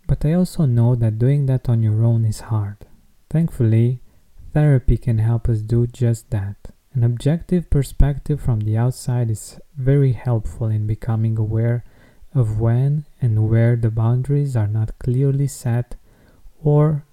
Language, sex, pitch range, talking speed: English, male, 110-135 Hz, 150 wpm